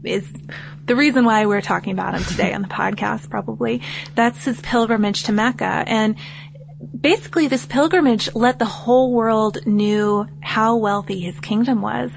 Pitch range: 190-235 Hz